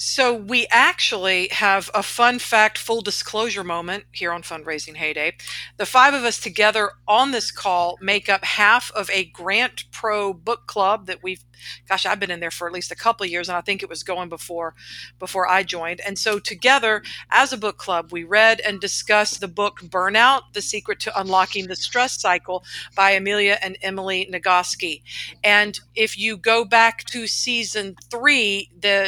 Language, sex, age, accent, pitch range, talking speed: English, female, 50-69, American, 180-220 Hz, 185 wpm